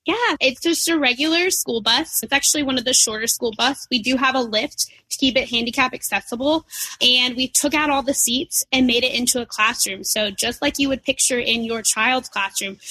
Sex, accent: female, American